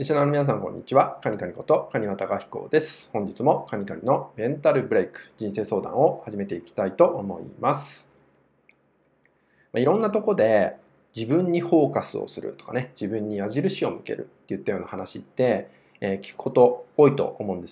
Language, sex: Japanese, male